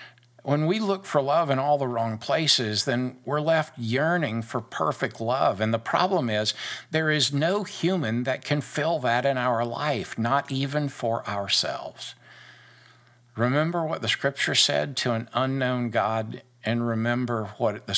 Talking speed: 165 wpm